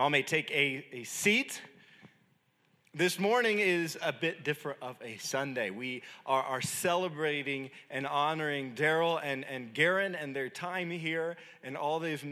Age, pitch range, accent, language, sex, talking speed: 30-49, 135-175 Hz, American, English, male, 155 wpm